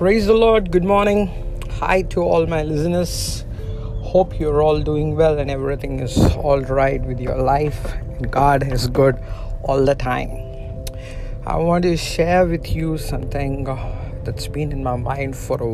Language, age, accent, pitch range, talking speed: English, 50-69, Indian, 115-140 Hz, 170 wpm